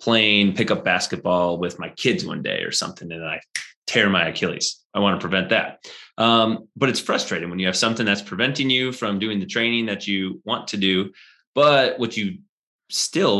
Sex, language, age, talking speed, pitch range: male, English, 30-49, 195 wpm, 95-115 Hz